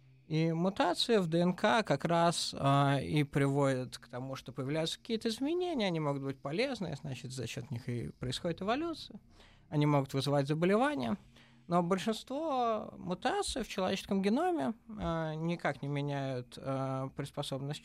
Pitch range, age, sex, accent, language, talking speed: 135-210 Hz, 20-39, male, native, Russian, 140 wpm